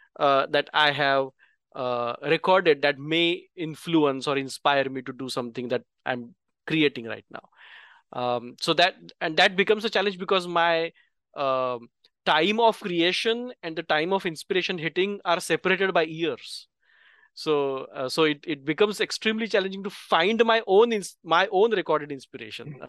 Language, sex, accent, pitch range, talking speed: English, male, Indian, 135-185 Hz, 160 wpm